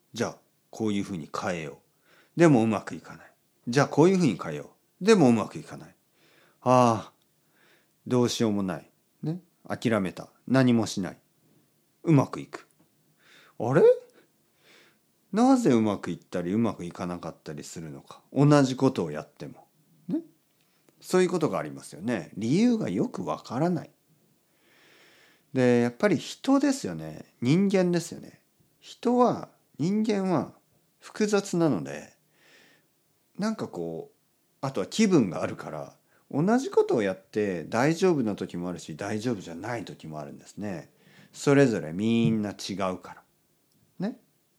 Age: 40-59